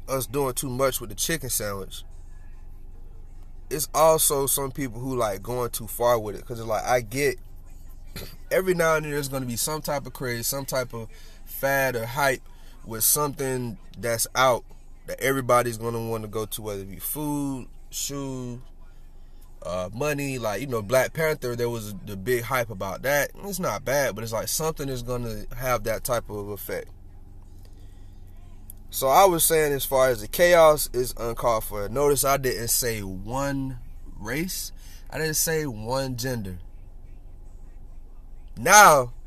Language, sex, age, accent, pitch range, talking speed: English, male, 20-39, American, 95-140 Hz, 165 wpm